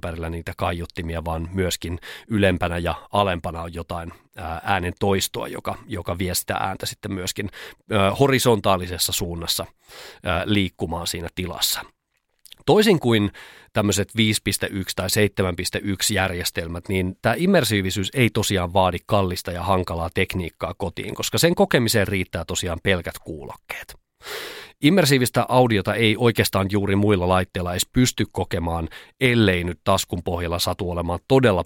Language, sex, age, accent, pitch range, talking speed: Finnish, male, 30-49, native, 90-110 Hz, 125 wpm